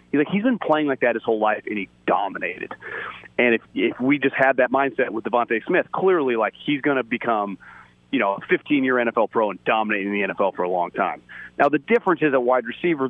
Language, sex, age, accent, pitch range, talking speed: English, male, 30-49, American, 110-135 Hz, 225 wpm